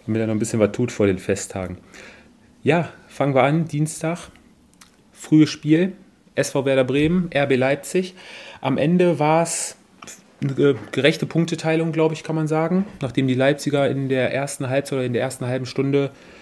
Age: 30-49